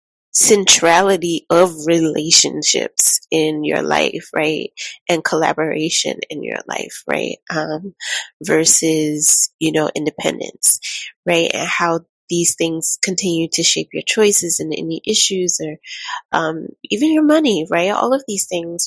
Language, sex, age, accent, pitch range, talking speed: English, female, 20-39, American, 170-195 Hz, 130 wpm